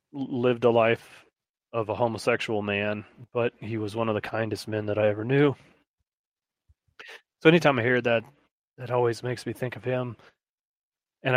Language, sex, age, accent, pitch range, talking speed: English, male, 30-49, American, 105-125 Hz, 170 wpm